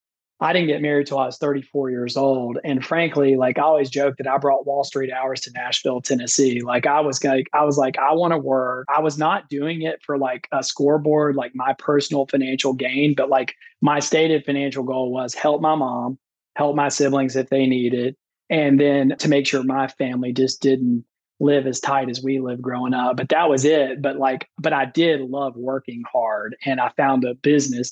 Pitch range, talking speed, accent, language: 130-145 Hz, 215 wpm, American, English